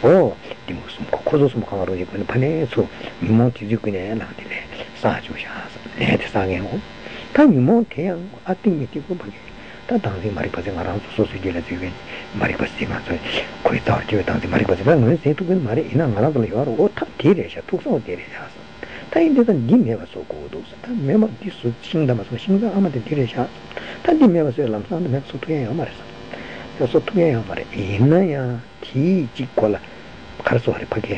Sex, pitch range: male, 115-165 Hz